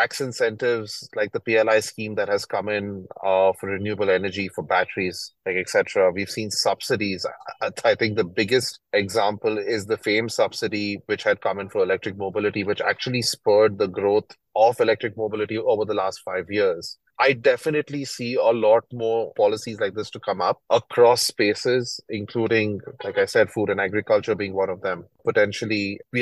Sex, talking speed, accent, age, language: male, 180 wpm, Indian, 30-49, English